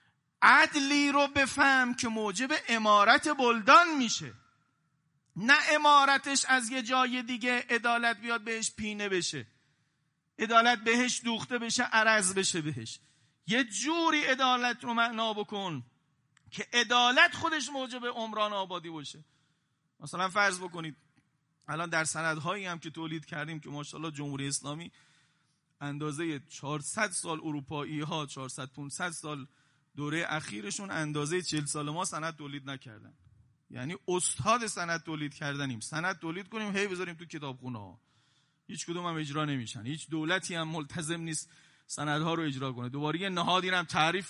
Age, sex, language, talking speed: 40-59, male, Persian, 135 wpm